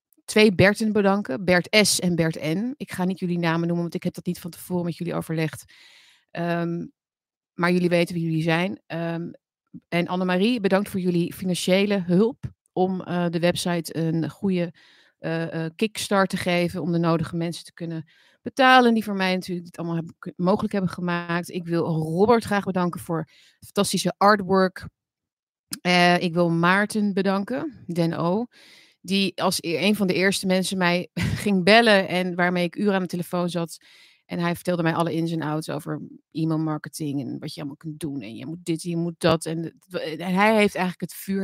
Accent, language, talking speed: Dutch, Dutch, 180 wpm